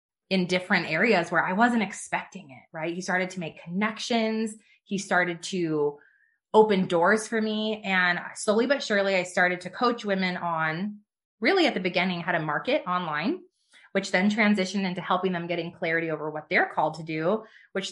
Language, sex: English, female